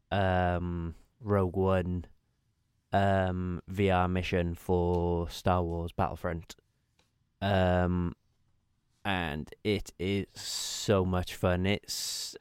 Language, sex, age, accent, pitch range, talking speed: English, male, 20-39, British, 90-105 Hz, 85 wpm